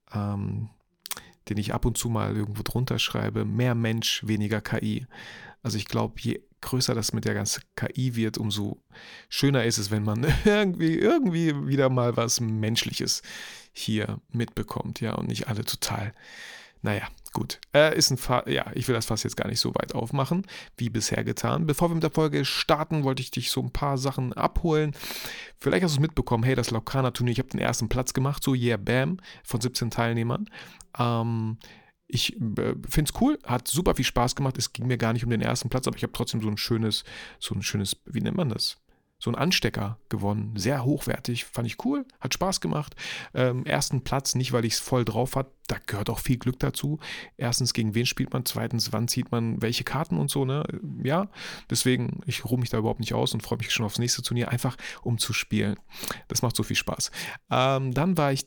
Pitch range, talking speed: 115-135 Hz, 210 wpm